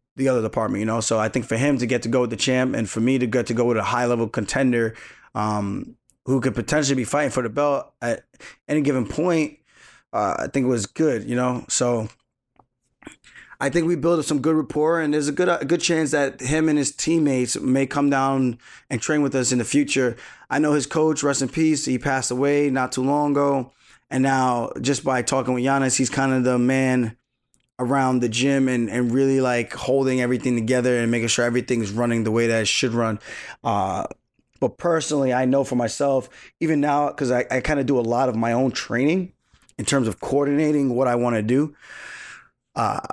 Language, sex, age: English, male, 20-39